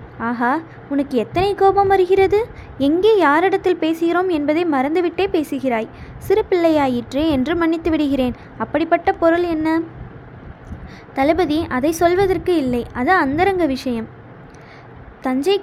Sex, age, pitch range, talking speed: female, 20-39, 275-345 Hz, 100 wpm